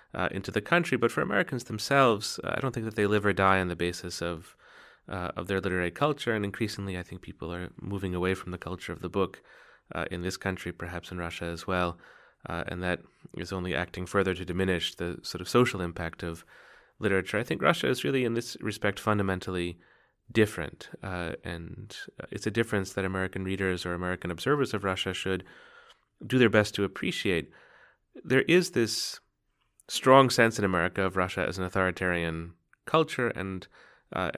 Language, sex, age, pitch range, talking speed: English, male, 30-49, 90-110 Hz, 190 wpm